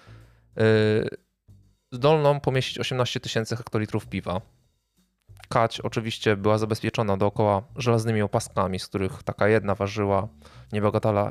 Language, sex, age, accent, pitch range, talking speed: Polish, male, 20-39, native, 100-115 Hz, 105 wpm